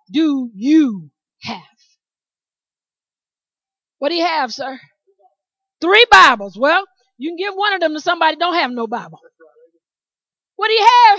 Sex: female